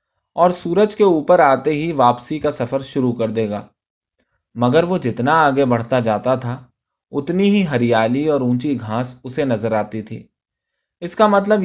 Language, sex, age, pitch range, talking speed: Urdu, male, 20-39, 120-160 Hz, 170 wpm